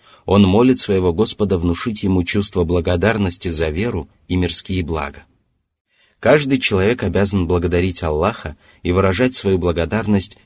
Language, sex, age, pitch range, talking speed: Russian, male, 30-49, 85-105 Hz, 125 wpm